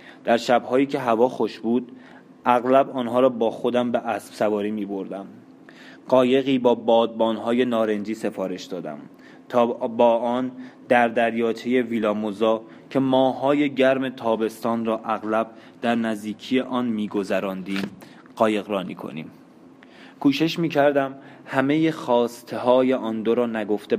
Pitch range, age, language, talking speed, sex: 105-125 Hz, 20-39, Persian, 120 wpm, male